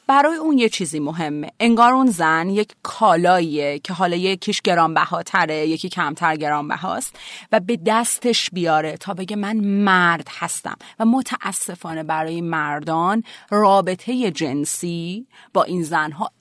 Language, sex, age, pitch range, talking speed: Persian, female, 30-49, 165-220 Hz, 130 wpm